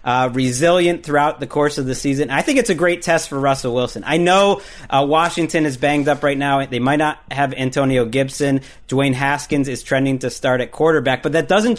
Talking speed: 220 wpm